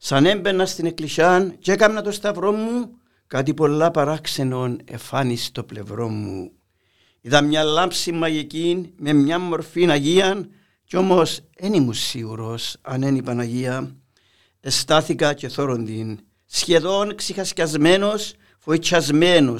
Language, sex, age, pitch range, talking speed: Greek, male, 60-79, 120-175 Hz, 115 wpm